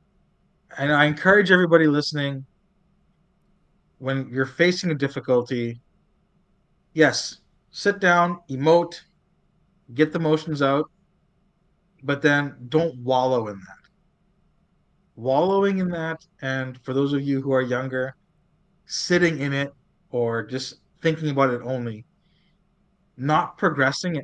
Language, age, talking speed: English, 30-49, 115 wpm